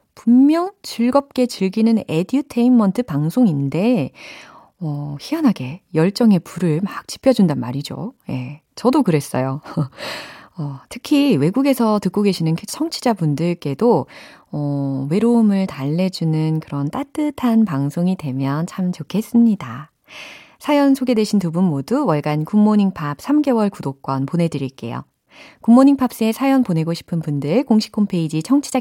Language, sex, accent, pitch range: Korean, female, native, 150-240 Hz